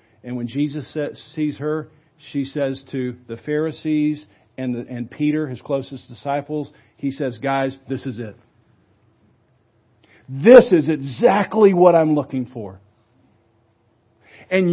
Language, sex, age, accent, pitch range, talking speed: English, male, 50-69, American, 130-210 Hz, 120 wpm